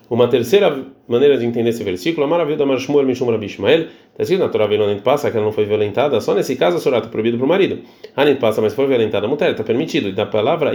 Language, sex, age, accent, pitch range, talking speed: Portuguese, male, 30-49, Brazilian, 110-145 Hz, 200 wpm